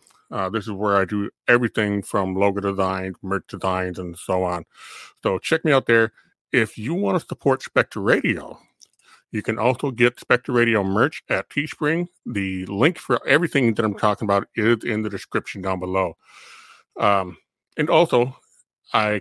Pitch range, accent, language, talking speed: 100-120 Hz, American, English, 170 wpm